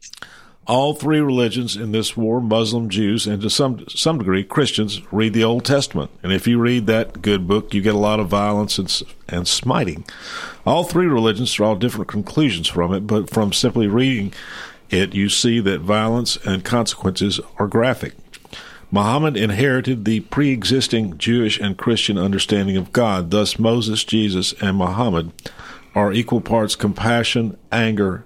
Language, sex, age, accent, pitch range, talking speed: English, male, 50-69, American, 95-120 Hz, 160 wpm